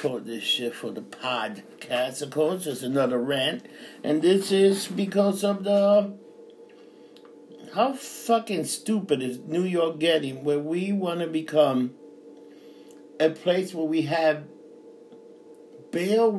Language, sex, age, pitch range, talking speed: English, male, 60-79, 160-235 Hz, 125 wpm